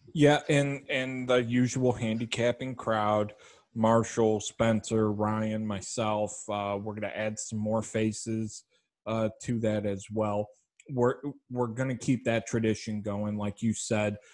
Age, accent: 30-49, American